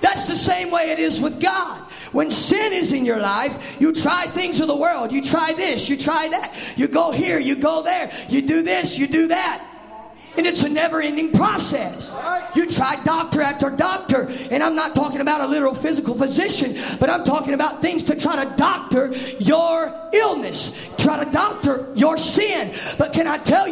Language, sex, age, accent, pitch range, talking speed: English, male, 40-59, American, 280-340 Hz, 195 wpm